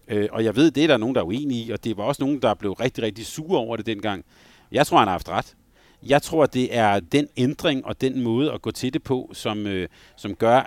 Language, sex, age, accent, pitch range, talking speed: Danish, male, 40-59, native, 105-135 Hz, 260 wpm